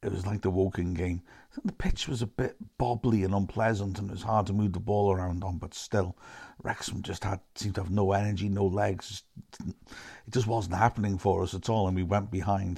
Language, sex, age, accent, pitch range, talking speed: English, male, 50-69, British, 90-105 Hz, 230 wpm